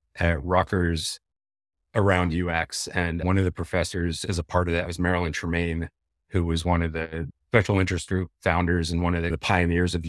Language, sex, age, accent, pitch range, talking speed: English, male, 30-49, American, 85-100 Hz, 190 wpm